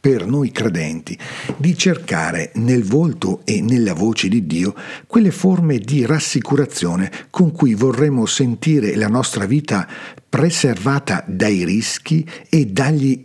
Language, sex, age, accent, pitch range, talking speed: Italian, male, 50-69, native, 110-165 Hz, 125 wpm